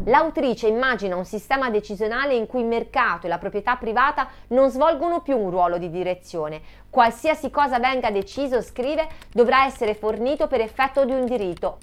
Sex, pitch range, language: female, 180-260 Hz, Italian